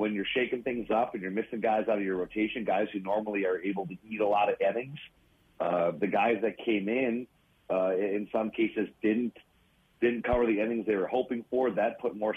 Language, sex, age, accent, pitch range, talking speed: English, male, 40-59, American, 100-120 Hz, 225 wpm